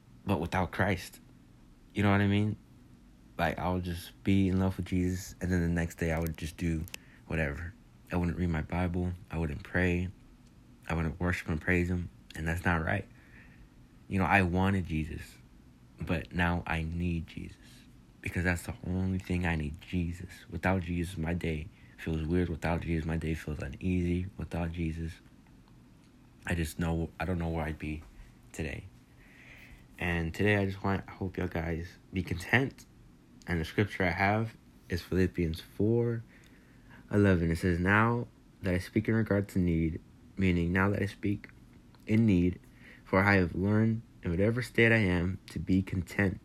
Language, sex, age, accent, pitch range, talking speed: English, male, 30-49, American, 85-100 Hz, 175 wpm